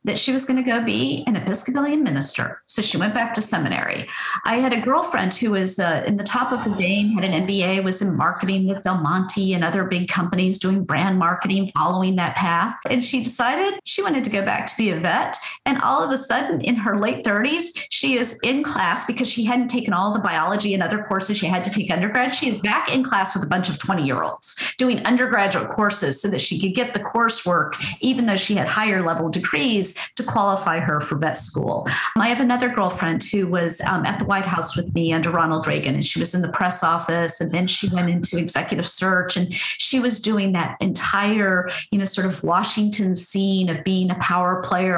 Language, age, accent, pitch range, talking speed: English, 40-59, American, 180-250 Hz, 230 wpm